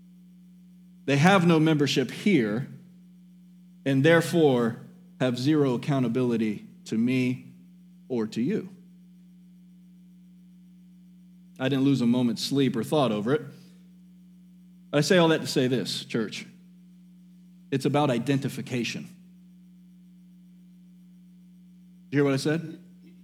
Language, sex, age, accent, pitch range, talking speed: English, male, 40-59, American, 175-215 Hz, 105 wpm